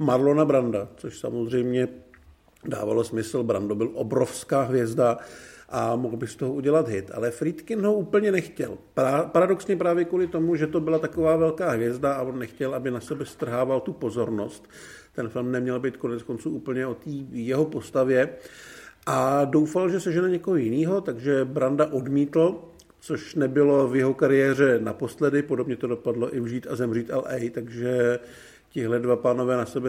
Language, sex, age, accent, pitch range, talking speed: Czech, male, 50-69, native, 125-145 Hz, 165 wpm